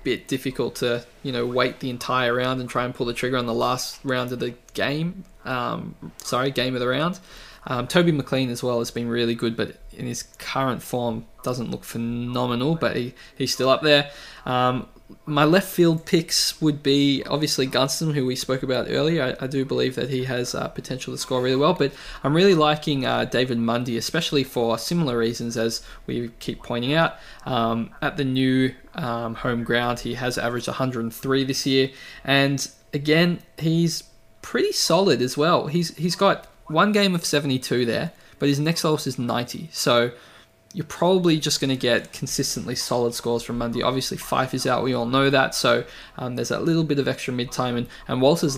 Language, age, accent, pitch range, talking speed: English, 20-39, Australian, 120-150 Hz, 195 wpm